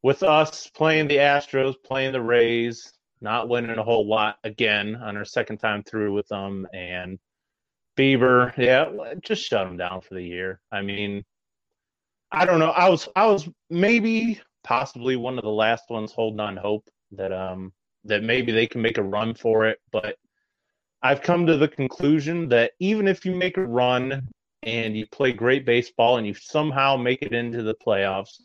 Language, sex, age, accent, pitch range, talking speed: English, male, 30-49, American, 110-145 Hz, 185 wpm